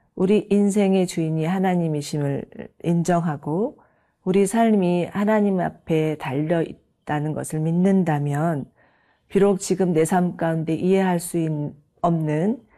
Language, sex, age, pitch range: Korean, female, 40-59, 155-195 Hz